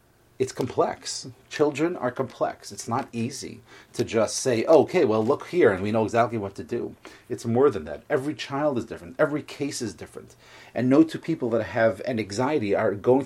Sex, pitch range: male, 115-150 Hz